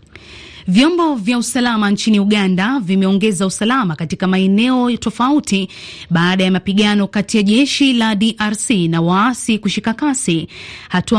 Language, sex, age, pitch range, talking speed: Swahili, female, 30-49, 190-230 Hz, 125 wpm